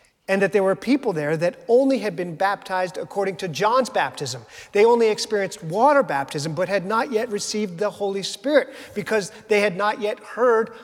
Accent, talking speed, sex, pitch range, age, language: American, 190 wpm, male, 170-230 Hz, 40-59, English